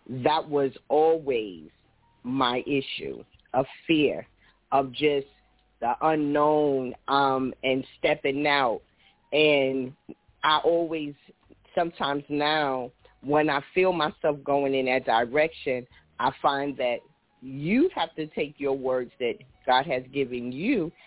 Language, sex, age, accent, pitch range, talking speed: English, female, 40-59, American, 135-170 Hz, 120 wpm